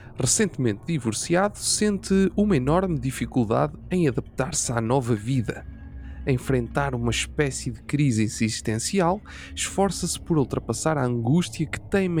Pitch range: 110-150 Hz